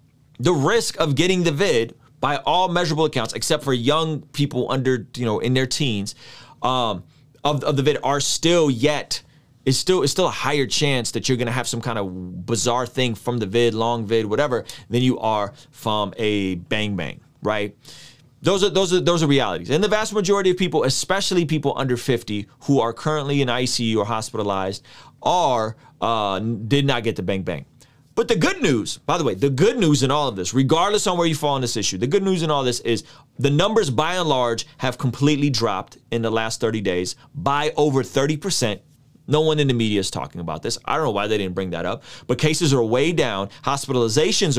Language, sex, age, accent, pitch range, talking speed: English, male, 30-49, American, 115-150 Hz, 215 wpm